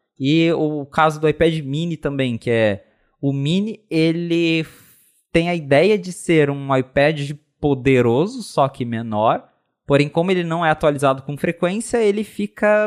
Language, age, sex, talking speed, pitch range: Portuguese, 20-39, male, 155 wpm, 115-165 Hz